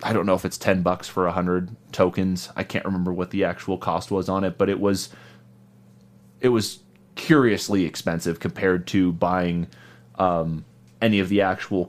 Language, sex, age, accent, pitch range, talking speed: English, male, 30-49, American, 85-105 Hz, 175 wpm